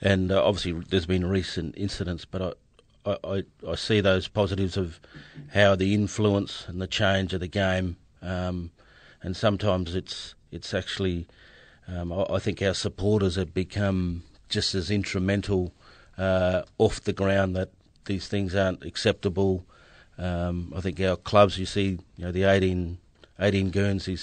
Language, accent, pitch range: English, Australian, 90-100 Hz